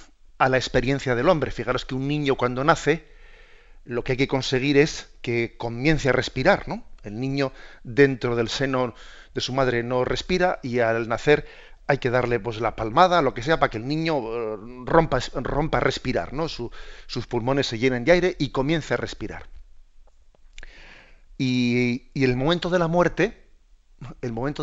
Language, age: Spanish, 40-59